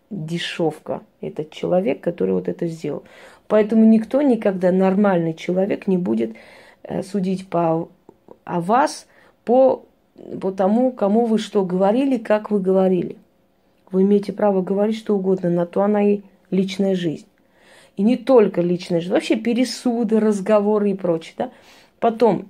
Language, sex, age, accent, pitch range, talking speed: Russian, female, 30-49, native, 180-220 Hz, 135 wpm